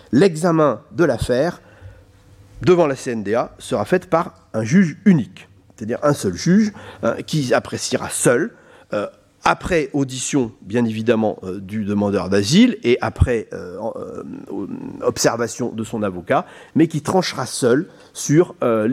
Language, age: French, 40-59